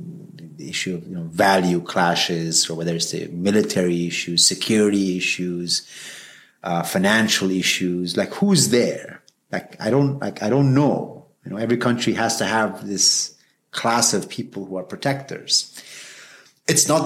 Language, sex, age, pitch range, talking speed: English, male, 30-49, 85-120 Hz, 150 wpm